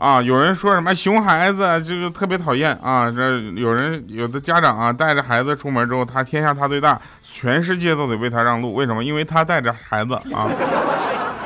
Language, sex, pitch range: Chinese, male, 120-185 Hz